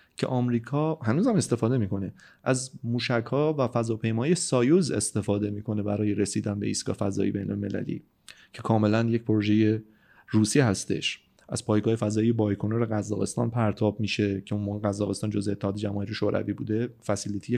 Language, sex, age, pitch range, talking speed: Persian, male, 30-49, 105-130 Hz, 145 wpm